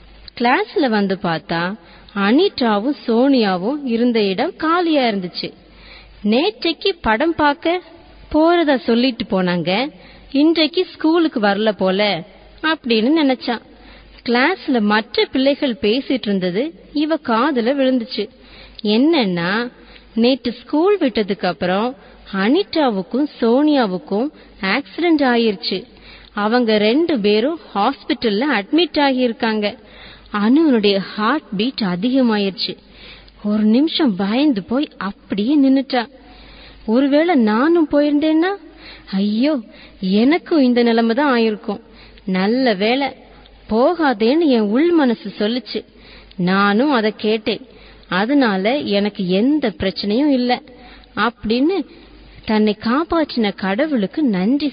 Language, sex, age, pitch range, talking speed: English, female, 30-49, 210-290 Hz, 85 wpm